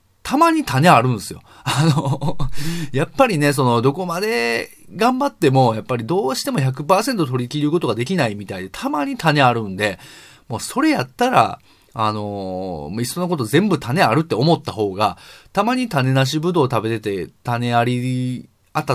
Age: 30-49